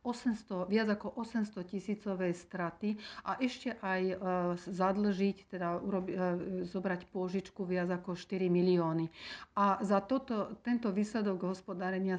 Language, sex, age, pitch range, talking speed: Slovak, female, 50-69, 175-190 Hz, 130 wpm